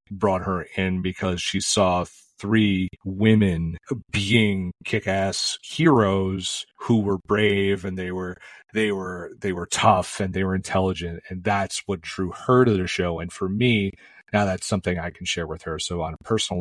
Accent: American